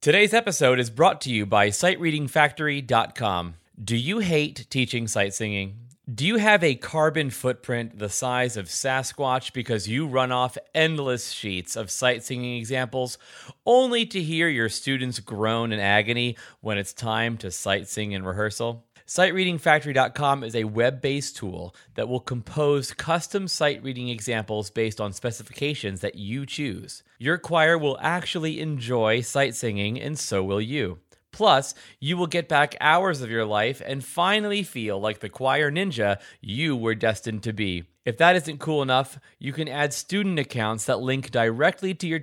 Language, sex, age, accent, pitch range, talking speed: English, male, 30-49, American, 110-150 Hz, 165 wpm